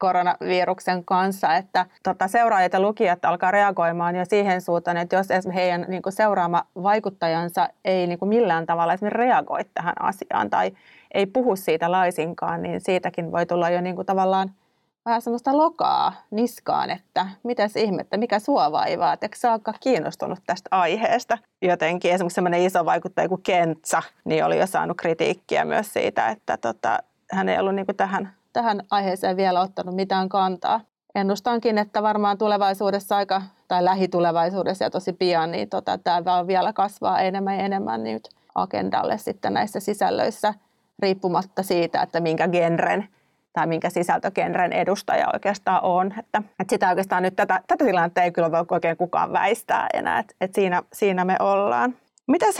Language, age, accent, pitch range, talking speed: Finnish, 30-49, native, 180-215 Hz, 150 wpm